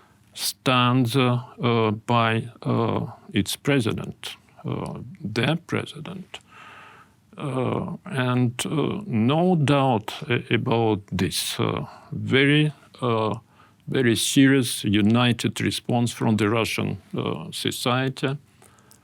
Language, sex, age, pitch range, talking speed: Dutch, male, 50-69, 110-140 Hz, 90 wpm